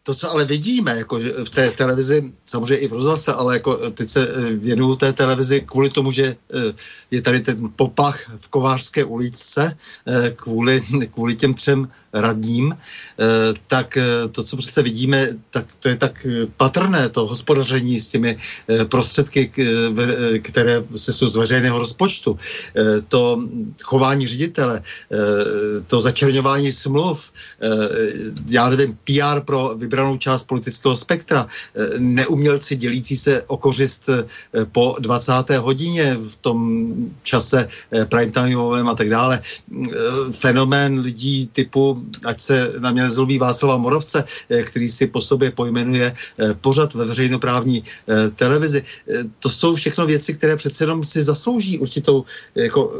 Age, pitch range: 50-69, 120-145 Hz